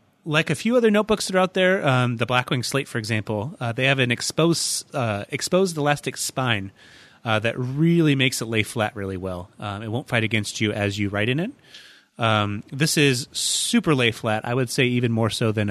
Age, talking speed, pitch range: 30-49, 220 wpm, 105-135 Hz